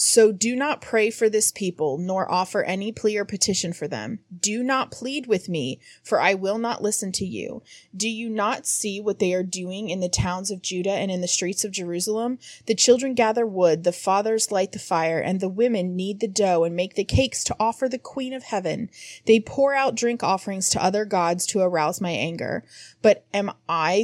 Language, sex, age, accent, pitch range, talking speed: English, female, 30-49, American, 185-225 Hz, 215 wpm